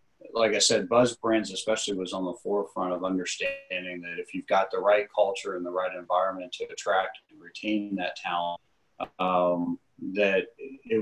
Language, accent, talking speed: English, American, 175 wpm